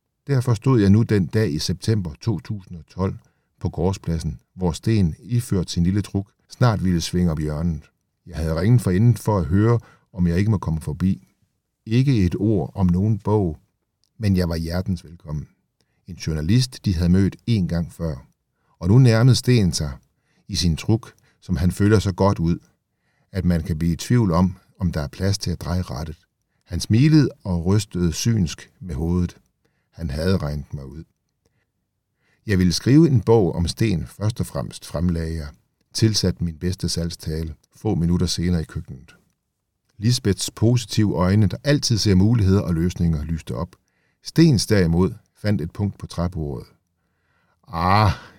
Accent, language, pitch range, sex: native, Danish, 85-110 Hz, male